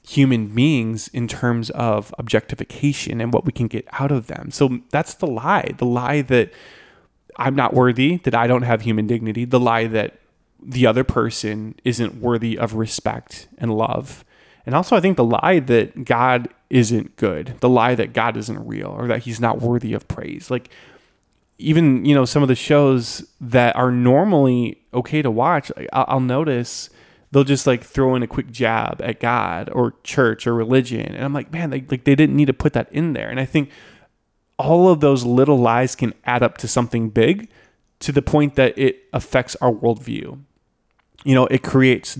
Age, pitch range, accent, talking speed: 20-39, 115-140 Hz, American, 190 wpm